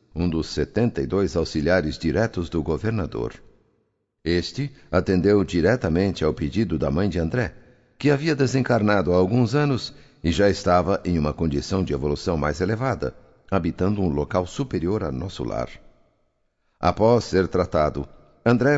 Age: 60-79